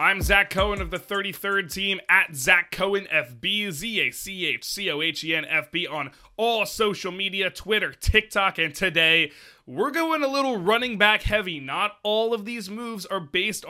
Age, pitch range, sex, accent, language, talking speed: 20-39, 145-200 Hz, male, American, English, 190 wpm